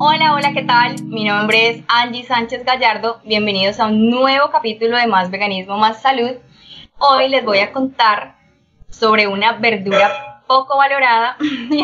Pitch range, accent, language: 195-245 Hz, Colombian, Spanish